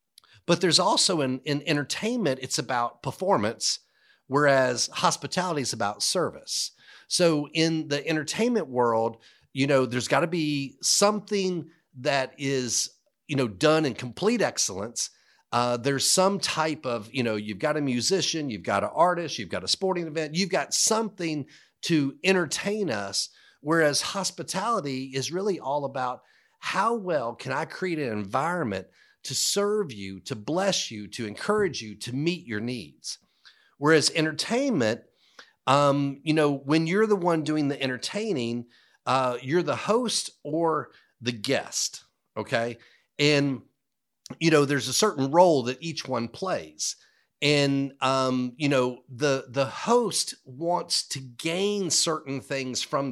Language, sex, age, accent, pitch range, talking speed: English, male, 40-59, American, 130-175 Hz, 145 wpm